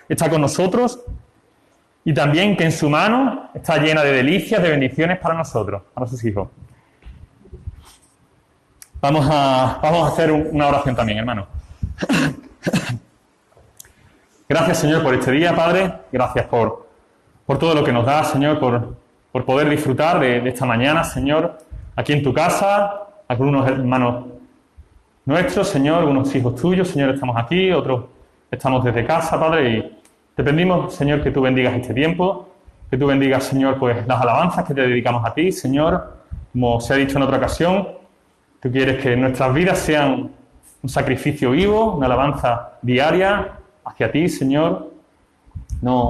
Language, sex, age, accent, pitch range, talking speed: Spanish, male, 30-49, Spanish, 125-160 Hz, 155 wpm